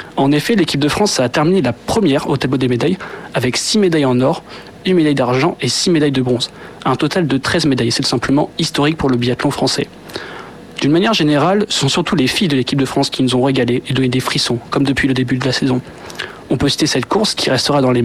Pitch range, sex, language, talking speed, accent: 130-165 Hz, male, French, 245 wpm, French